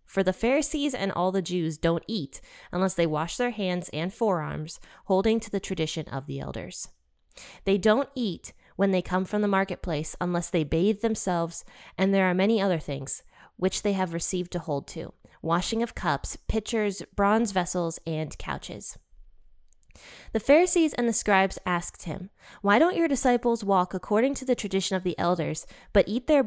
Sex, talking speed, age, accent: female, 180 wpm, 20-39, American